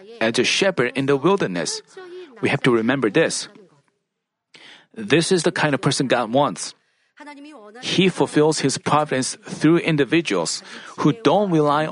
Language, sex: Korean, male